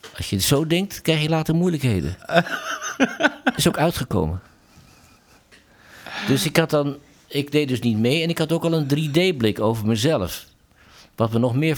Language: Dutch